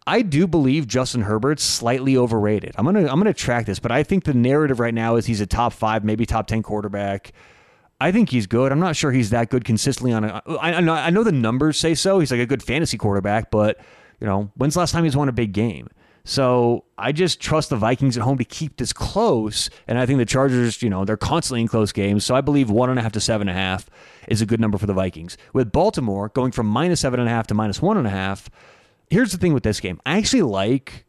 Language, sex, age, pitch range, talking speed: English, male, 30-49, 110-140 Hz, 265 wpm